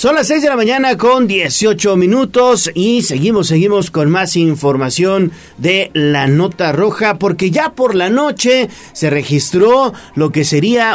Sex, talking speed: male, 160 wpm